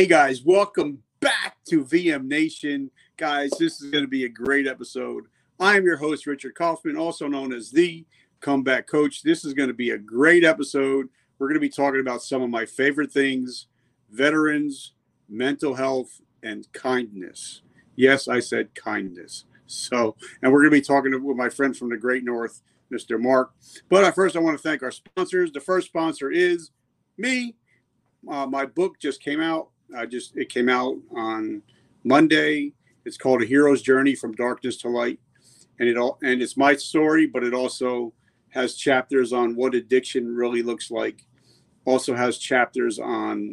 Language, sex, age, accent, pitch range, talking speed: English, male, 50-69, American, 125-155 Hz, 175 wpm